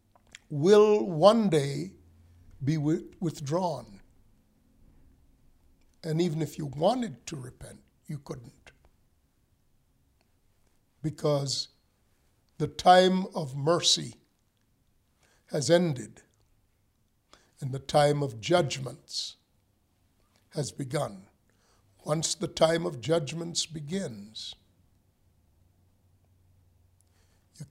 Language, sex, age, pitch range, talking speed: English, male, 60-79, 100-160 Hz, 75 wpm